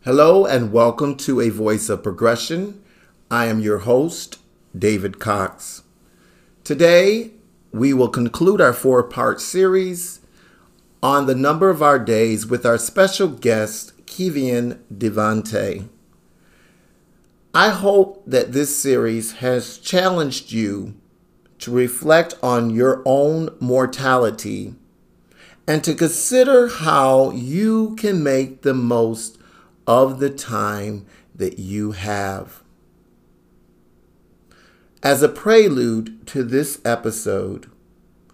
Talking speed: 105 wpm